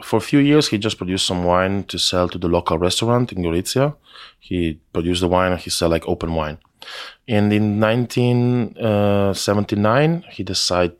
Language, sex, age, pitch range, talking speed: English, male, 20-39, 85-95 Hz, 175 wpm